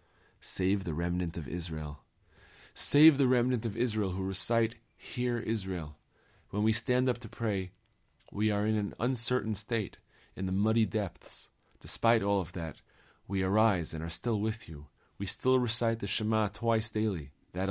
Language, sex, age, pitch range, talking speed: English, male, 40-59, 90-115 Hz, 165 wpm